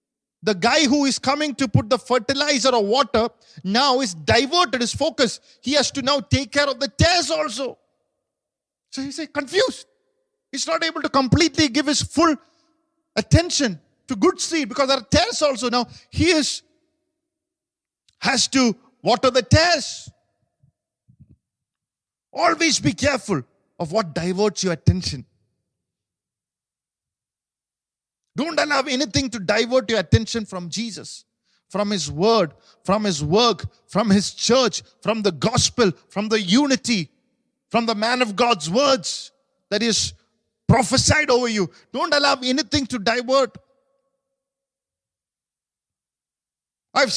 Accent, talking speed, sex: Indian, 135 wpm, male